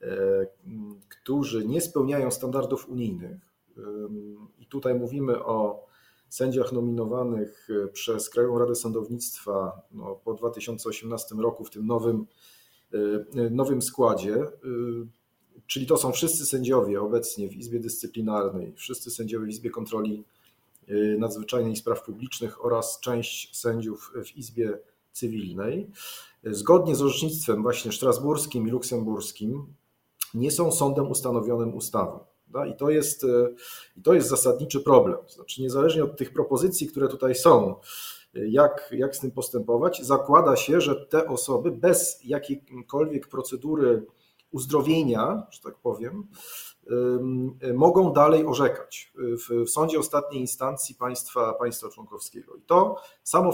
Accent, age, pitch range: native, 40-59, 115-145 Hz